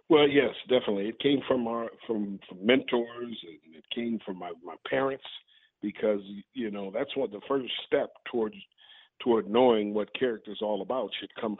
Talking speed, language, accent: 180 wpm, English, American